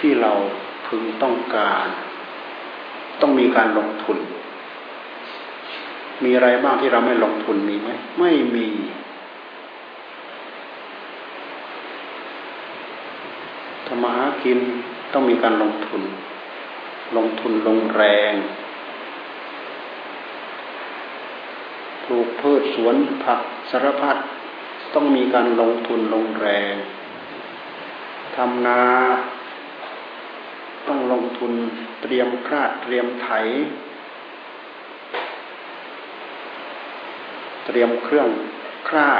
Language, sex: Thai, male